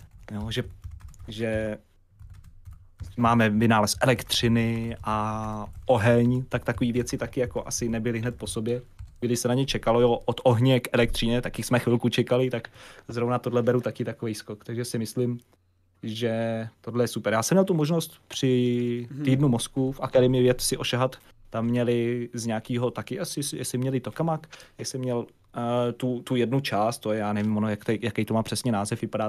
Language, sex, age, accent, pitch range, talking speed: Czech, male, 30-49, native, 110-125 Hz, 180 wpm